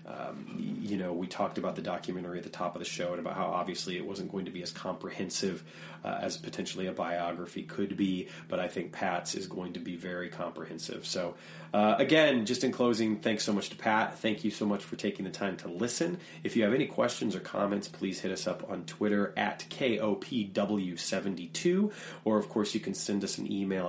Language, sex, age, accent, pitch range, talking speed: English, male, 30-49, American, 90-105 Hz, 220 wpm